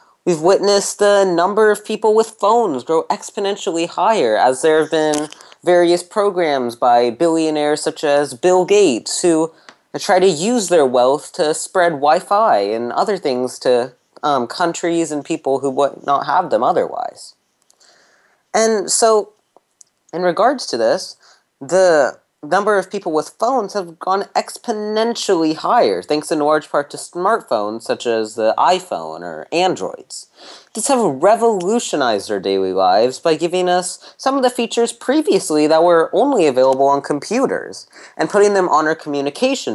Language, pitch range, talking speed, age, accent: English, 145-205 Hz, 150 wpm, 20-39, American